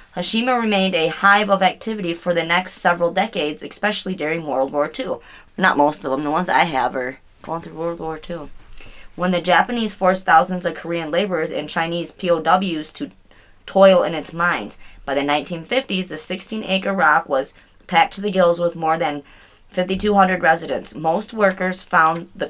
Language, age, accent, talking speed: English, 30-49, American, 175 wpm